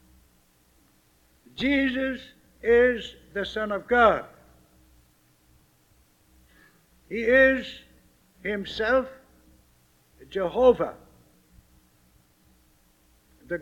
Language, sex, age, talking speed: English, male, 60-79, 50 wpm